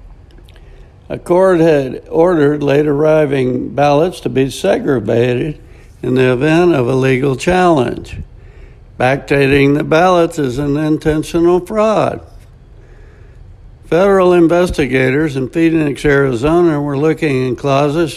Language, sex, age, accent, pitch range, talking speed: English, male, 60-79, American, 140-175 Hz, 105 wpm